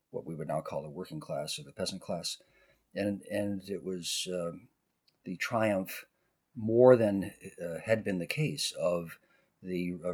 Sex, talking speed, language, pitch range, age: male, 170 wpm, English, 85-110 Hz, 50-69